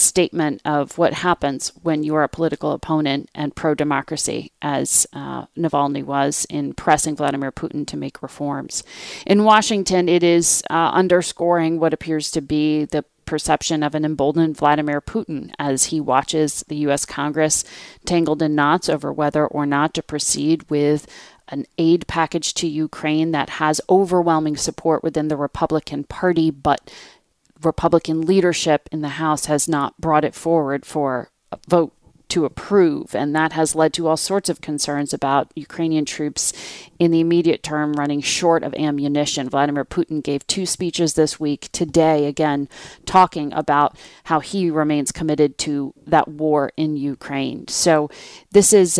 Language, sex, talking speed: English, female, 160 wpm